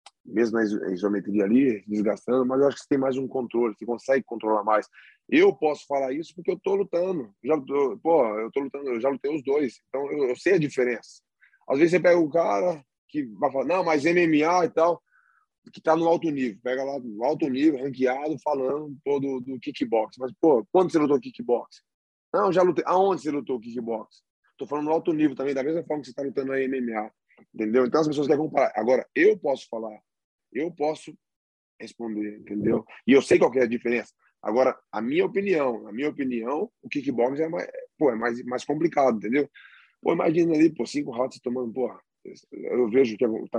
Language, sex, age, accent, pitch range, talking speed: English, male, 20-39, Brazilian, 120-155 Hz, 215 wpm